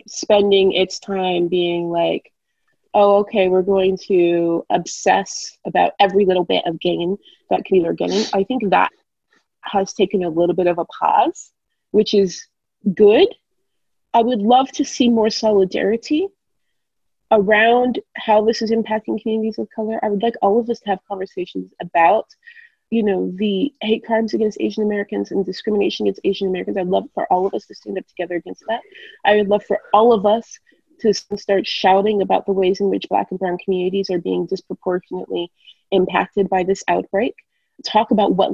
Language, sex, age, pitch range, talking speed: English, female, 30-49, 190-235 Hz, 180 wpm